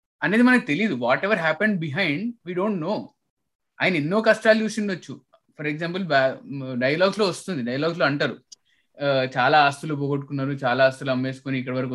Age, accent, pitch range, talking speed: 20-39, native, 130-195 Hz, 155 wpm